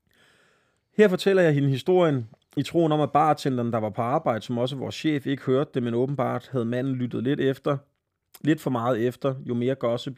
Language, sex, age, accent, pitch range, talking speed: Danish, male, 30-49, native, 110-140 Hz, 205 wpm